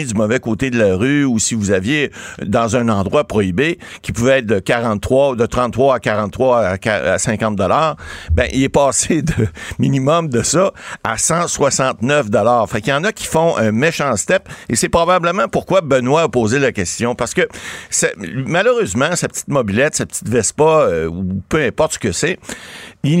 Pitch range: 110-160 Hz